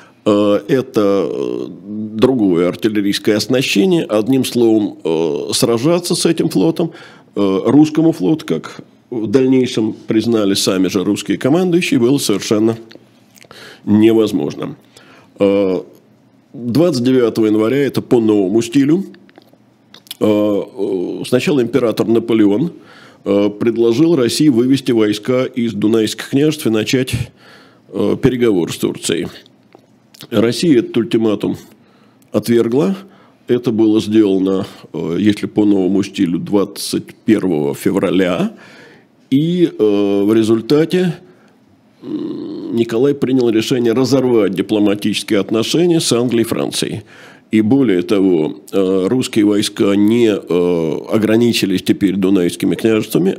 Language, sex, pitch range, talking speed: Russian, male, 105-140 Hz, 95 wpm